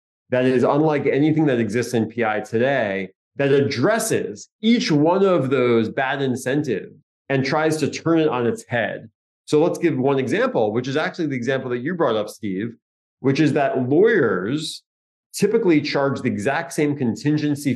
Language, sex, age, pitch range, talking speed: English, male, 30-49, 125-155 Hz, 170 wpm